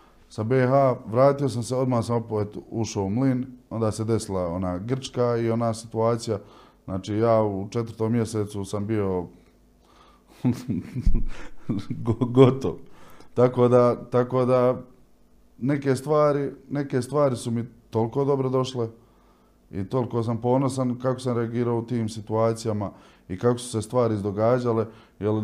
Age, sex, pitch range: 20-39, male, 100-120 Hz